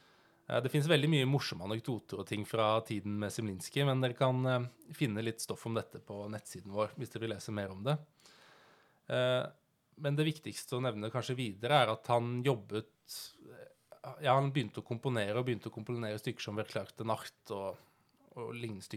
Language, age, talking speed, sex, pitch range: English, 20-39, 175 wpm, male, 105-135 Hz